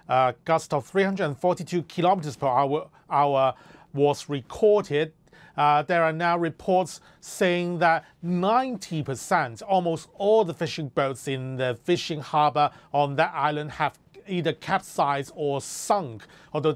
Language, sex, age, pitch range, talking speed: English, male, 30-49, 145-175 Hz, 130 wpm